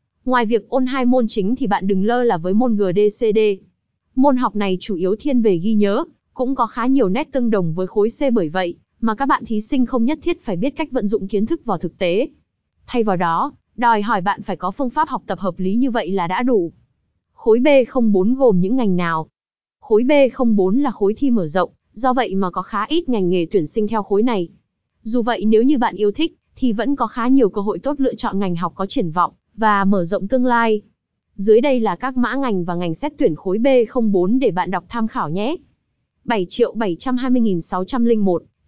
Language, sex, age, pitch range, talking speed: Vietnamese, female, 20-39, 195-255 Hz, 225 wpm